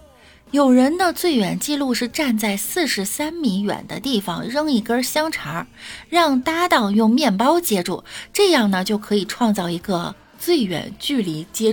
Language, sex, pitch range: Chinese, female, 200-295 Hz